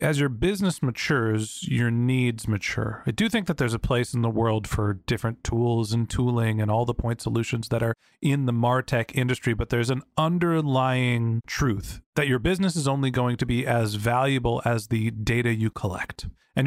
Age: 30-49